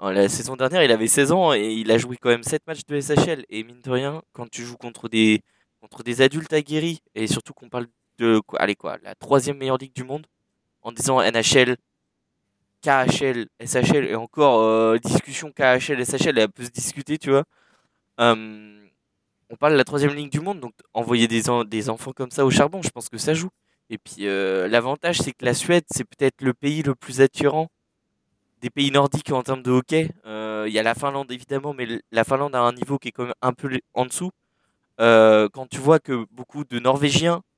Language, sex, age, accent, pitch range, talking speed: French, male, 20-39, French, 115-145 Hz, 215 wpm